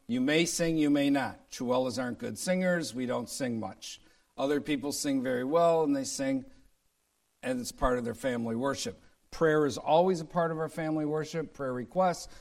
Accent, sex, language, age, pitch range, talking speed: American, male, English, 50-69, 125-155 Hz, 195 wpm